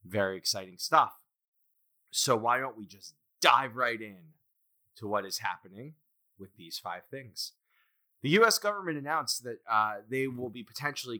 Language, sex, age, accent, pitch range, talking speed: English, male, 20-39, American, 100-130 Hz, 155 wpm